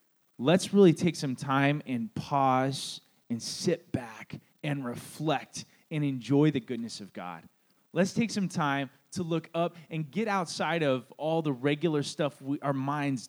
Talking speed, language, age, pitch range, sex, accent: 160 wpm, English, 20-39, 125-165 Hz, male, American